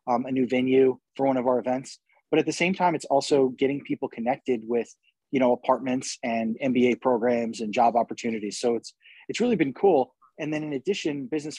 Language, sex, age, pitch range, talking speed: English, male, 20-39, 120-140 Hz, 205 wpm